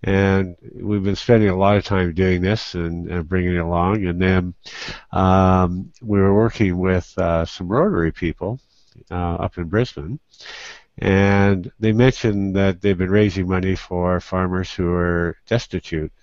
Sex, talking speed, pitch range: male, 160 wpm, 90-115 Hz